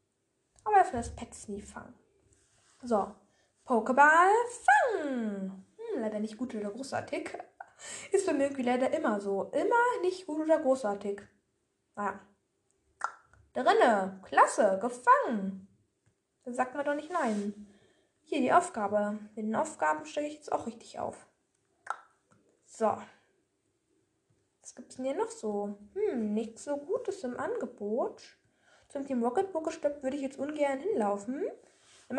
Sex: female